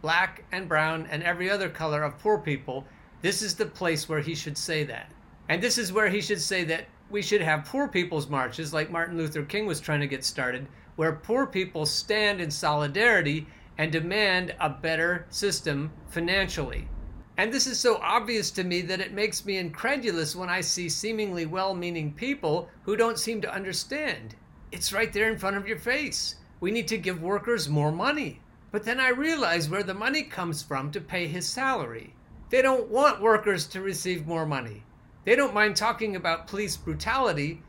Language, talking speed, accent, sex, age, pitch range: English, 190 wpm, American, male, 50-69, 155-220 Hz